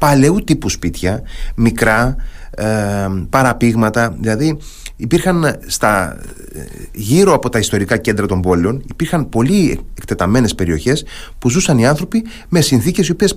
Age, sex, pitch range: 30-49, male, 95-150 Hz